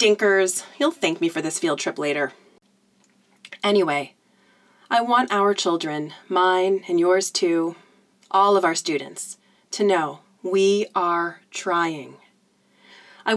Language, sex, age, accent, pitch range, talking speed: English, female, 30-49, American, 185-205 Hz, 125 wpm